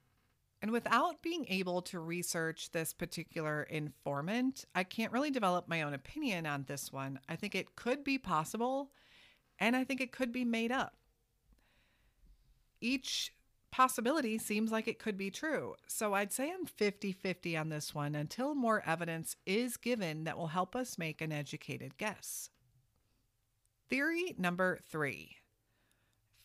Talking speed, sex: 145 wpm, female